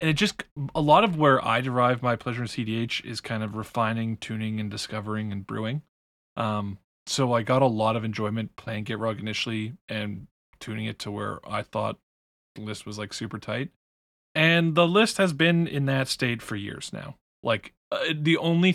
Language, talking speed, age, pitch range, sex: English, 195 wpm, 20-39, 110-135 Hz, male